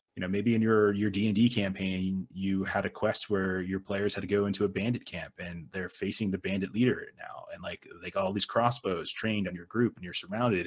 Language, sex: English, male